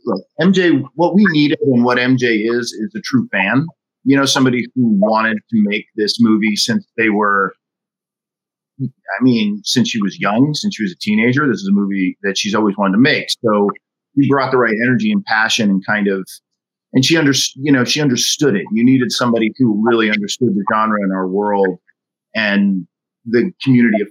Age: 40-59